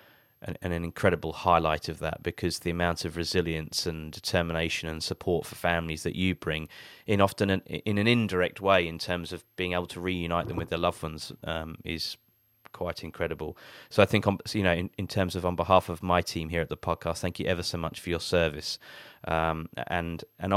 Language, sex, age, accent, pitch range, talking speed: English, male, 30-49, British, 85-105 Hz, 205 wpm